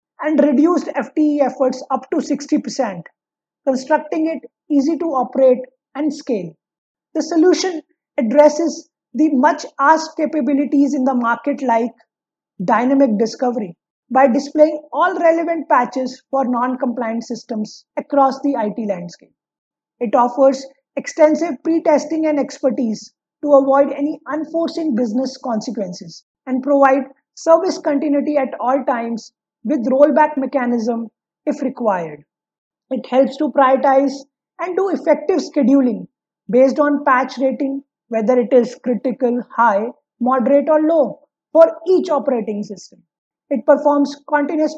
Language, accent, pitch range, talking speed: English, Indian, 250-300 Hz, 120 wpm